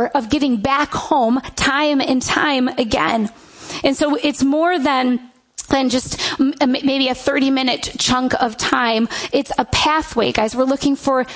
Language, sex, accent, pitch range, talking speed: English, female, American, 255-295 Hz, 155 wpm